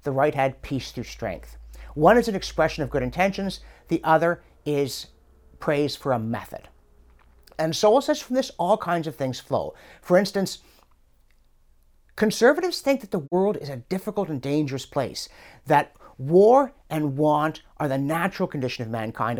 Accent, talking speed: American, 165 wpm